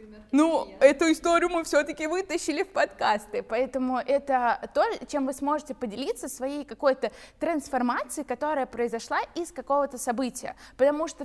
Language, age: Russian, 20-39